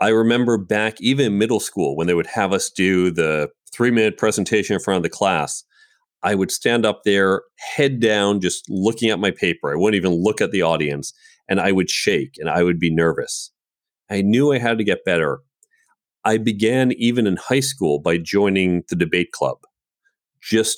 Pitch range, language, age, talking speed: 90-120 Hz, English, 40-59, 195 wpm